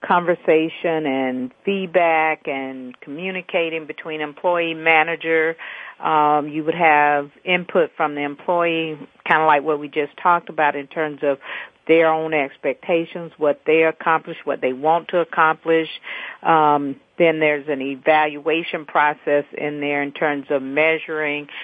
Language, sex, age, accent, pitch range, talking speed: English, female, 50-69, American, 145-165 Hz, 140 wpm